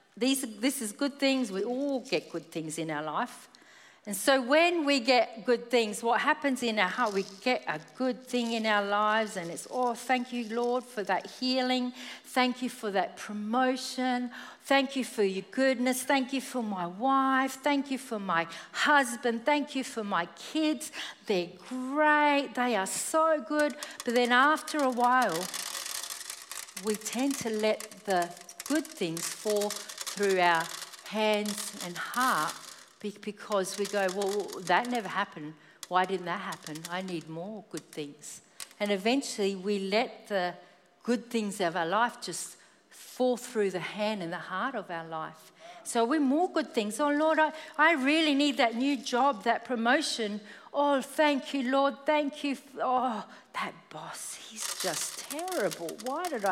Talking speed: 170 wpm